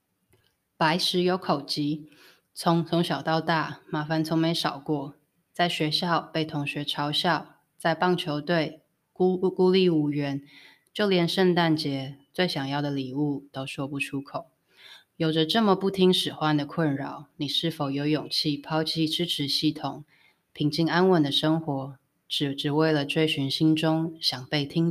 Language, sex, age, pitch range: Chinese, female, 20-39, 145-170 Hz